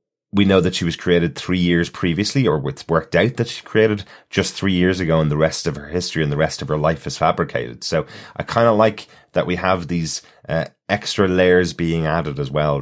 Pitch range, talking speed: 75-90 Hz, 235 wpm